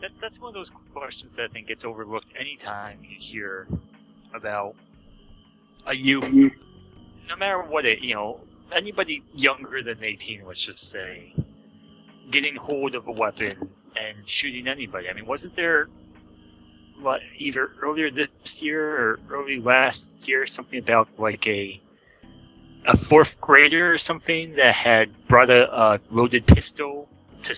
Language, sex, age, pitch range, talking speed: English, male, 30-49, 110-150 Hz, 145 wpm